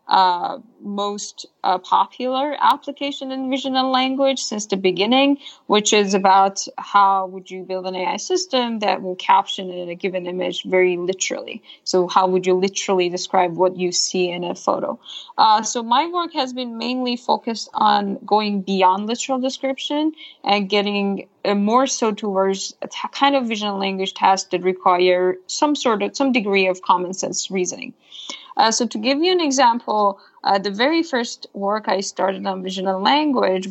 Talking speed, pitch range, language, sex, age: 175 wpm, 190-255 Hz, English, female, 20-39